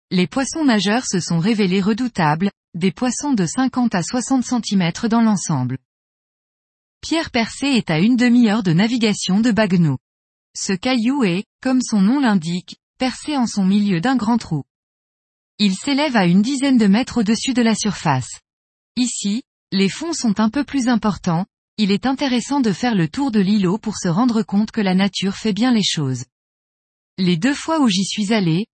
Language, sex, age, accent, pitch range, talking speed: French, female, 20-39, French, 185-250 Hz, 180 wpm